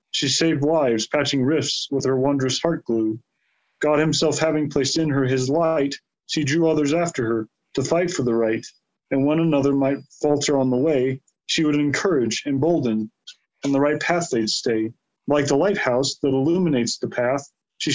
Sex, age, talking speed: male, 30-49, 180 wpm